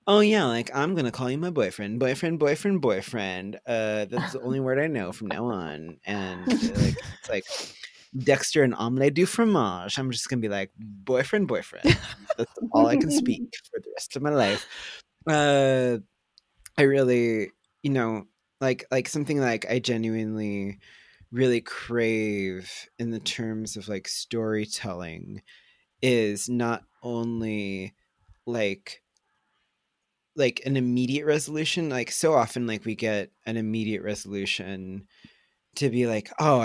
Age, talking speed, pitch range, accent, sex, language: 20-39, 150 wpm, 105-130 Hz, American, male, English